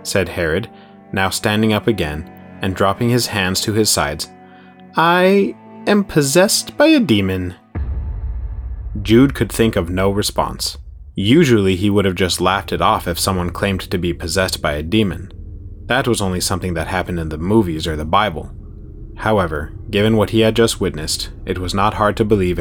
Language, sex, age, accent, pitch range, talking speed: English, male, 30-49, American, 90-120 Hz, 180 wpm